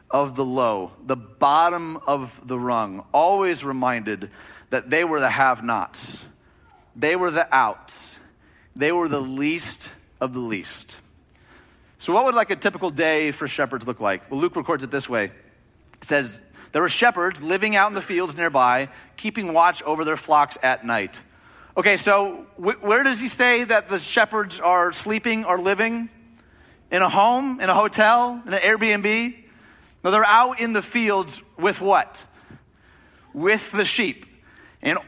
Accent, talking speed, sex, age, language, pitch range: American, 165 wpm, male, 30-49, English, 140-205 Hz